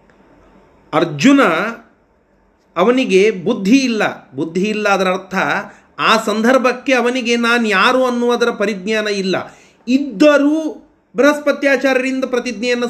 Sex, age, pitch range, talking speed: male, 30-49, 200-260 Hz, 90 wpm